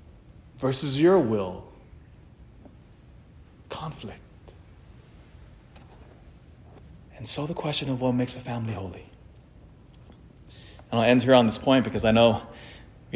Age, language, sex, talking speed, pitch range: 30-49, English, male, 115 wpm, 100-125 Hz